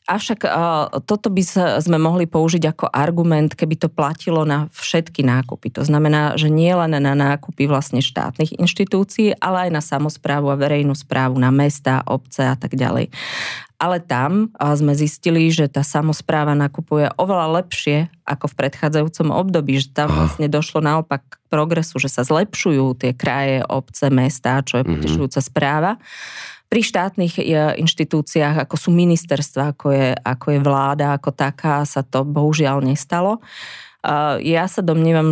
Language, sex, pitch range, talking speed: Slovak, female, 135-160 Hz, 150 wpm